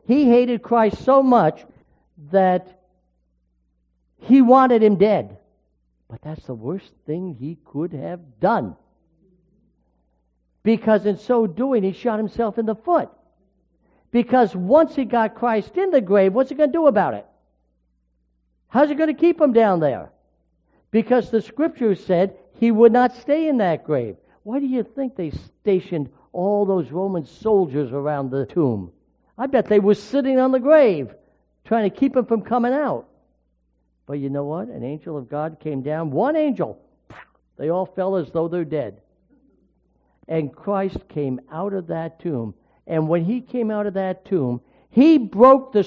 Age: 60-79